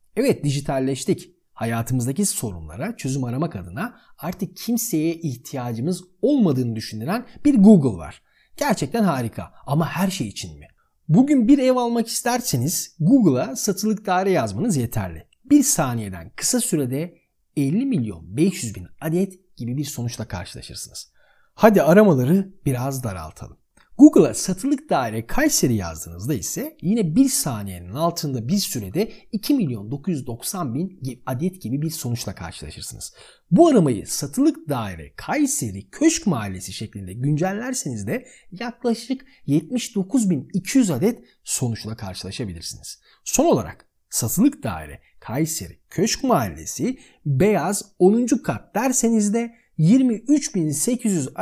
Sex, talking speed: male, 110 wpm